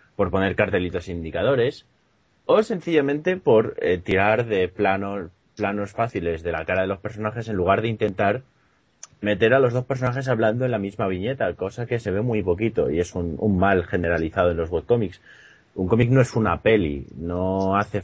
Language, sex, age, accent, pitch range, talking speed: Spanish, male, 30-49, Spanish, 90-115 Hz, 185 wpm